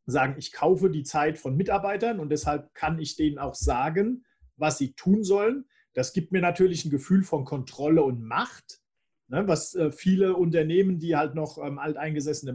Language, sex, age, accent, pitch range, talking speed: English, male, 40-59, German, 140-185 Hz, 165 wpm